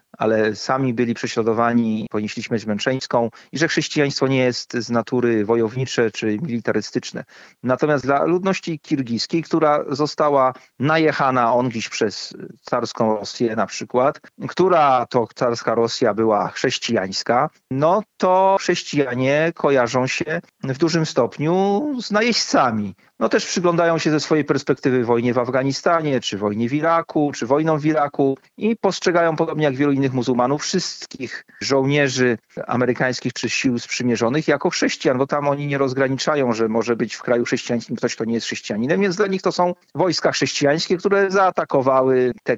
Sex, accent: male, native